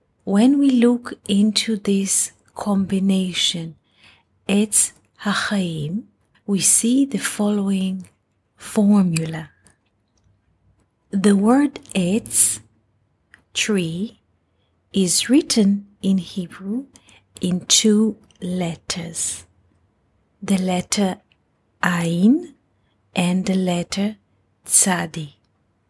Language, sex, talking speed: English, female, 70 wpm